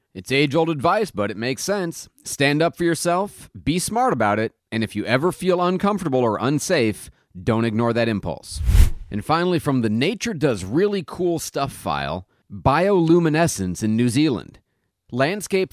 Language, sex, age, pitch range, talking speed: English, male, 30-49, 105-150 Hz, 160 wpm